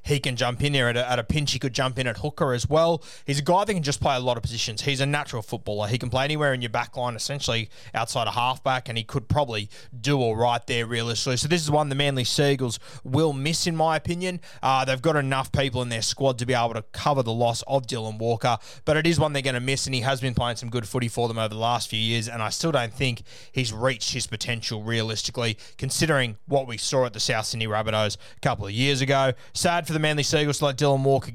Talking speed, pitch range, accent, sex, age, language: 265 wpm, 120-145 Hz, Australian, male, 20-39, English